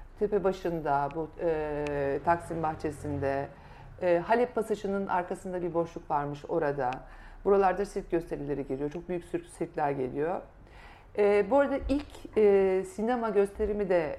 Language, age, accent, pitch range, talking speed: Turkish, 50-69, native, 150-205 Hz, 135 wpm